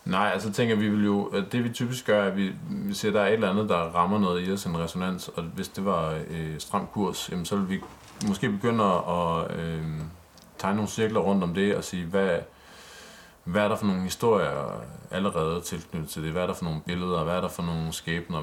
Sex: male